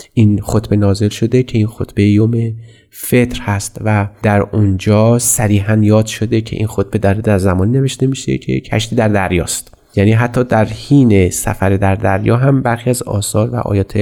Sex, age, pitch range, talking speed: male, 30-49, 100-120 Hz, 170 wpm